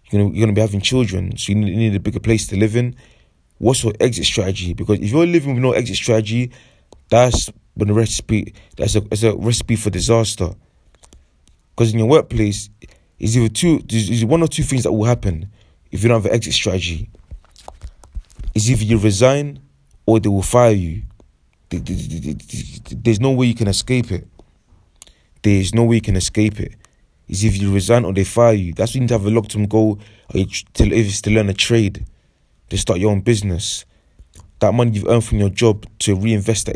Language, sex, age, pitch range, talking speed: English, male, 20-39, 95-115 Hz, 195 wpm